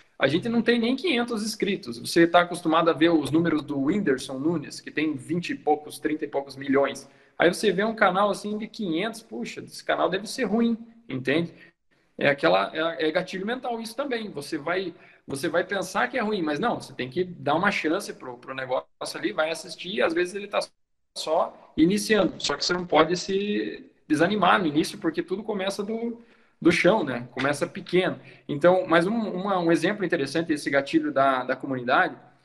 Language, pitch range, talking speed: Portuguese, 160-205 Hz, 190 wpm